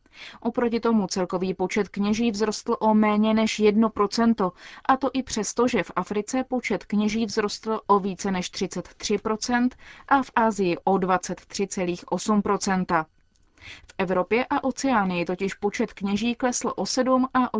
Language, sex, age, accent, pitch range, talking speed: Czech, female, 20-39, native, 185-230 Hz, 145 wpm